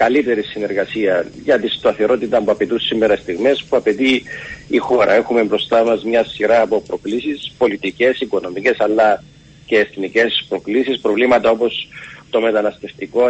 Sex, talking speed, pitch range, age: male, 135 wpm, 110-145 Hz, 40-59